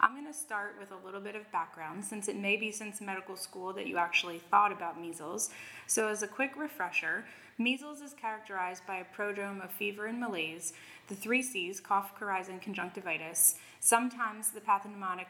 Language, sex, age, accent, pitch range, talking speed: English, female, 20-39, American, 190-225 Hz, 185 wpm